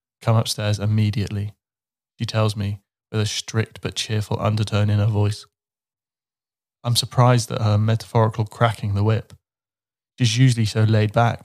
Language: English